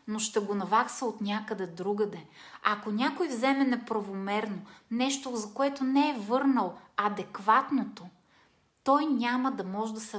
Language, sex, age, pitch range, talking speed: Bulgarian, female, 30-49, 200-265 Hz, 140 wpm